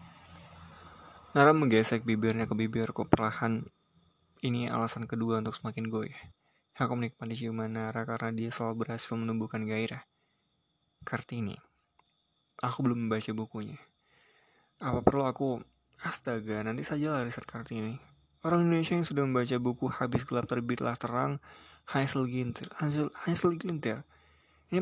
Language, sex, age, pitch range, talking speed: Indonesian, male, 20-39, 105-125 Hz, 120 wpm